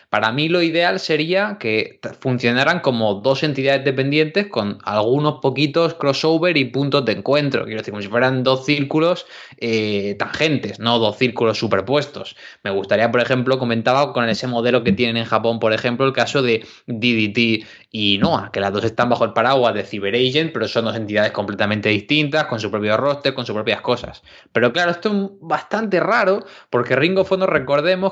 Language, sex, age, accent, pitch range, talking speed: Spanish, male, 20-39, Spanish, 115-150 Hz, 185 wpm